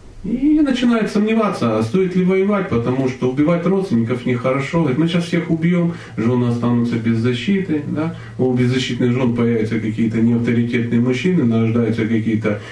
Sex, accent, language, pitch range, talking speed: male, native, Russian, 115-175 Hz, 145 wpm